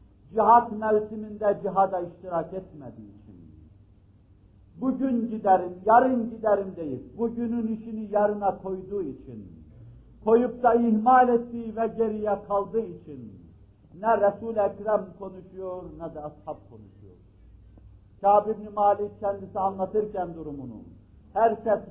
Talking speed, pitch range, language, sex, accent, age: 105 wpm, 145-220 Hz, Turkish, male, native, 50-69